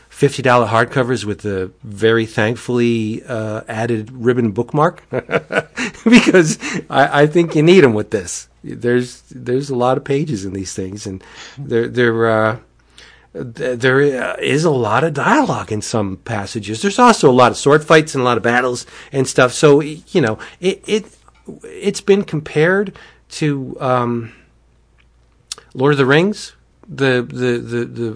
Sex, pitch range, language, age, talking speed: male, 110-145 Hz, English, 40-59, 155 wpm